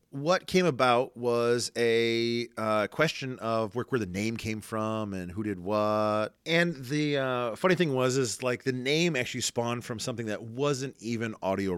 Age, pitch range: 40-59, 100-125 Hz